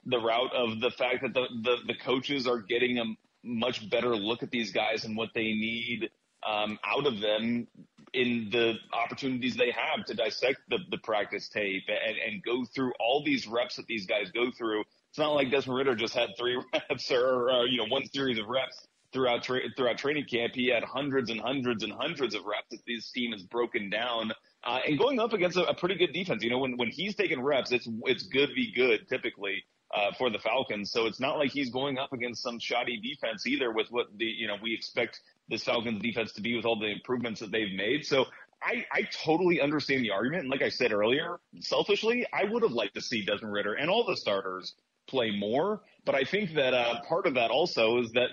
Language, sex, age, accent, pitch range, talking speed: English, male, 30-49, American, 115-135 Hz, 225 wpm